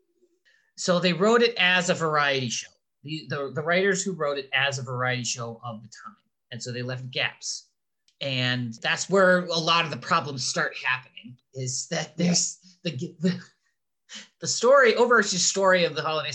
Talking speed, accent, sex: 175 wpm, American, male